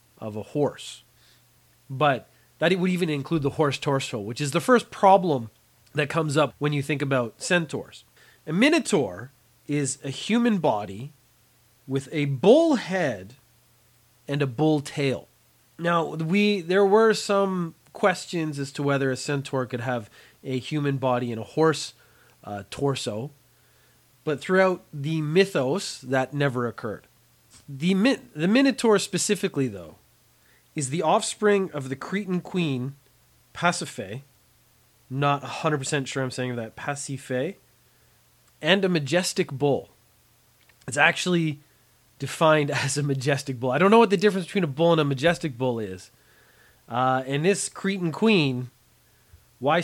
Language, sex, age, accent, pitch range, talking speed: English, male, 30-49, American, 130-175 Hz, 145 wpm